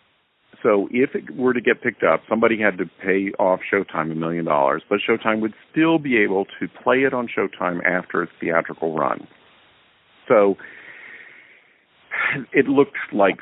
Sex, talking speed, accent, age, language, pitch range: male, 160 wpm, American, 50-69, English, 85-105 Hz